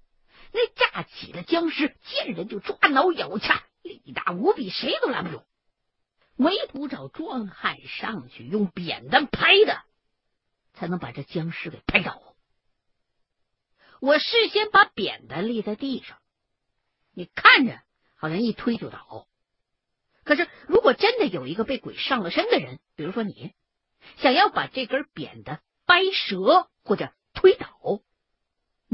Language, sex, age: Chinese, female, 50-69